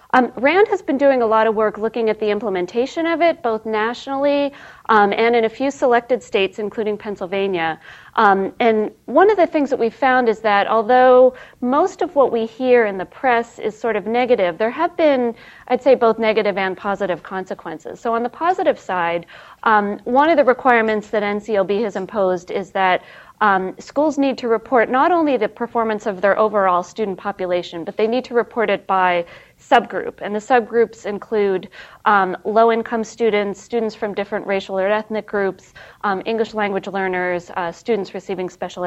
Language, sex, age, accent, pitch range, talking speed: English, female, 40-59, American, 195-245 Hz, 185 wpm